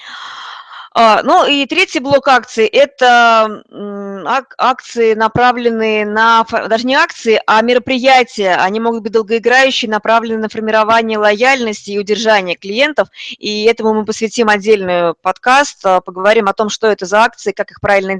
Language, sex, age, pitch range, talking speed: Russian, female, 20-39, 200-245 Hz, 135 wpm